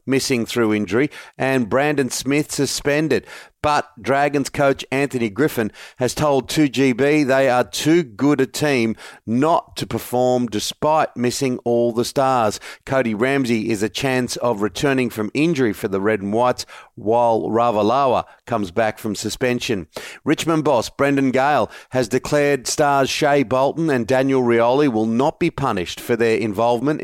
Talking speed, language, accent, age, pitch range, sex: 150 wpm, English, Australian, 40-59, 120-140 Hz, male